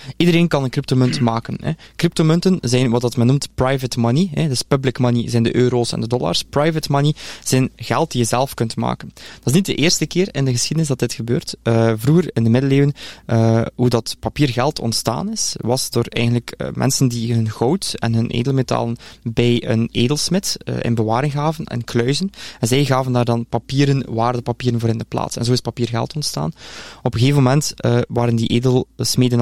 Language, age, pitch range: Dutch, 20-39, 120-145 Hz